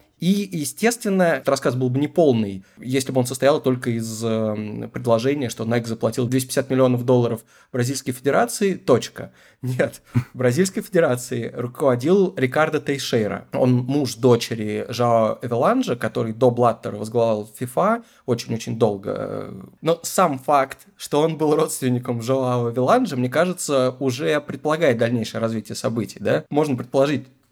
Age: 20-39